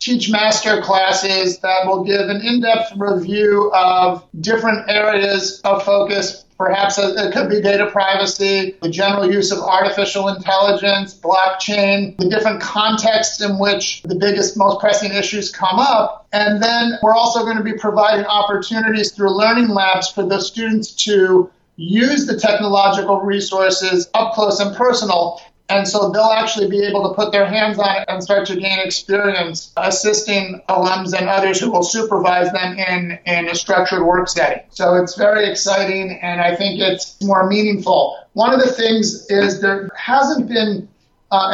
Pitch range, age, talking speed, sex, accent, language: 190-210 Hz, 40-59, 165 wpm, male, American, English